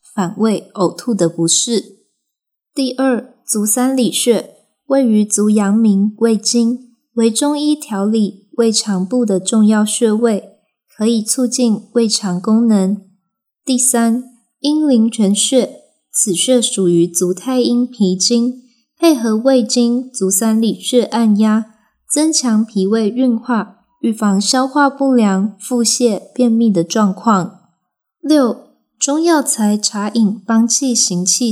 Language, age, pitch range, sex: Chinese, 20-39, 205-245 Hz, female